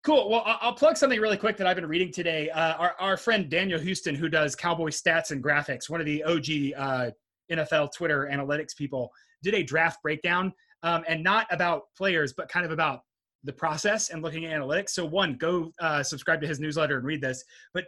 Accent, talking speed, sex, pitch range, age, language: American, 215 wpm, male, 150-195 Hz, 30-49, English